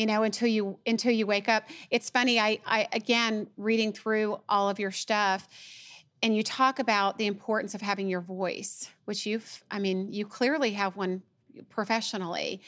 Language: English